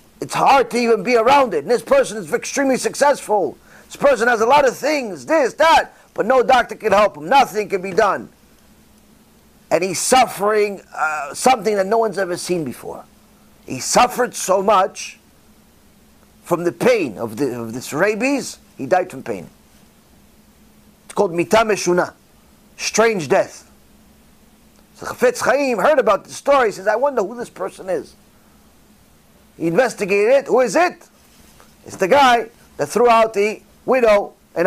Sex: male